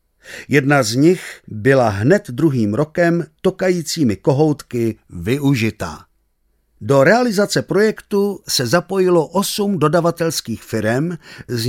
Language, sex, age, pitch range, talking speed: Czech, male, 50-69, 120-170 Hz, 100 wpm